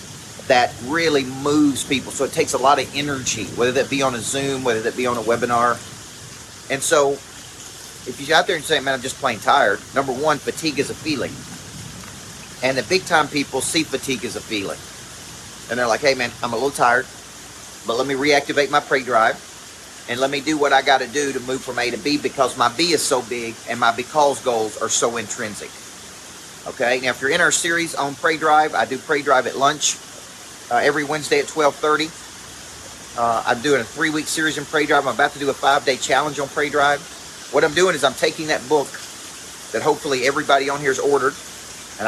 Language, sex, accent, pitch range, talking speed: English, male, American, 120-145 Hz, 215 wpm